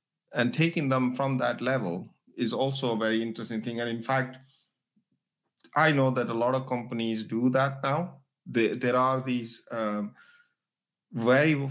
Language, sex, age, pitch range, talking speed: English, male, 50-69, 115-140 Hz, 150 wpm